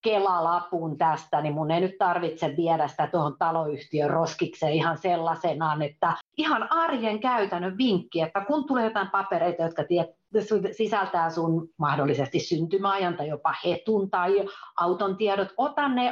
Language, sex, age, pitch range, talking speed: Finnish, female, 40-59, 165-230 Hz, 140 wpm